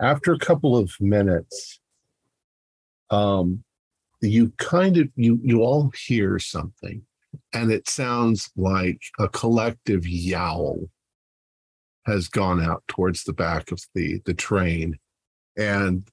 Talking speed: 120 wpm